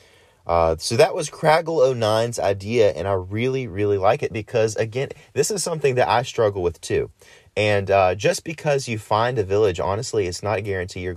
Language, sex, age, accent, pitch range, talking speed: English, male, 30-49, American, 90-120 Hz, 195 wpm